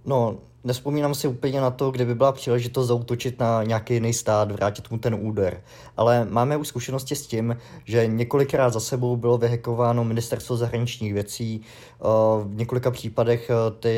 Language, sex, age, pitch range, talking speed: Czech, male, 20-39, 110-120 Hz, 165 wpm